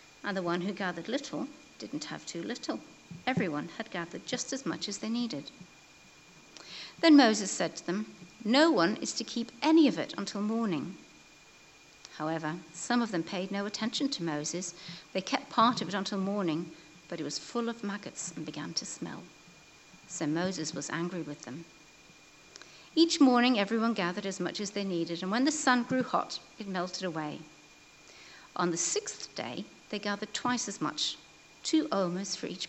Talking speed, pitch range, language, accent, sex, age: 180 wpm, 170-230 Hz, English, British, female, 60-79